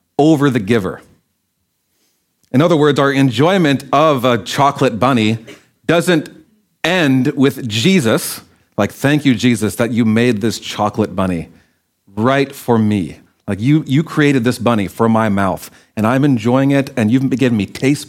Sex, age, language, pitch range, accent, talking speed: male, 40-59, English, 110-135 Hz, American, 155 wpm